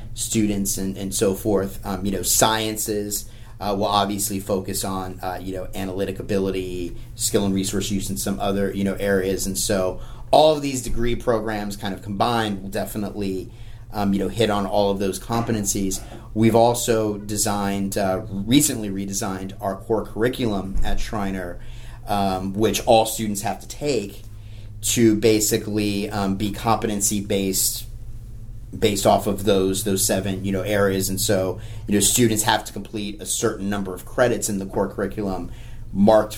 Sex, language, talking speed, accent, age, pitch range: male, English, 165 wpm, American, 30-49, 95-110 Hz